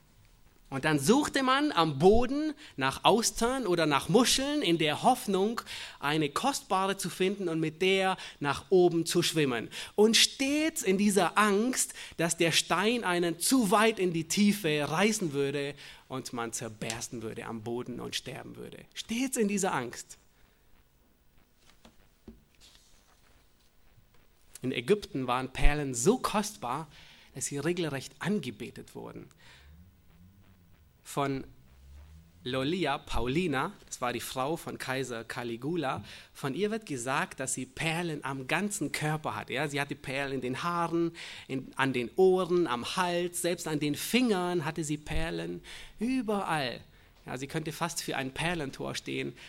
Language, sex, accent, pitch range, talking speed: German, male, German, 130-200 Hz, 140 wpm